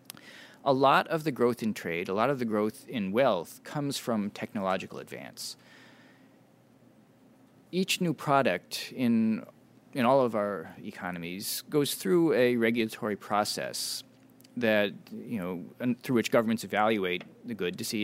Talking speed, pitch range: 145 wpm, 110-145 Hz